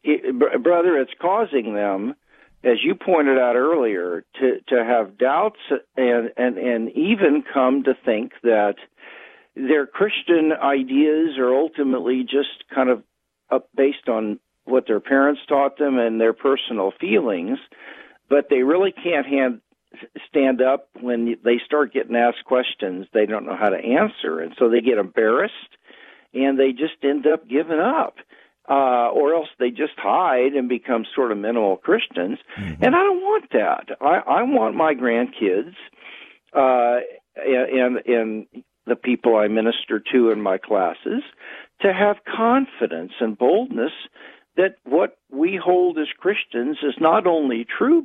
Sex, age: male, 50-69